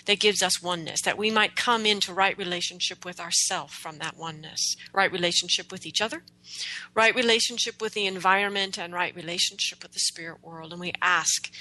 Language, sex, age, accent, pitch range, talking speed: English, female, 40-59, American, 165-210 Hz, 185 wpm